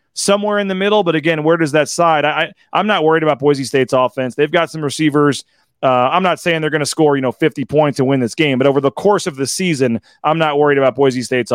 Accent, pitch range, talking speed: American, 135-160 Hz, 270 wpm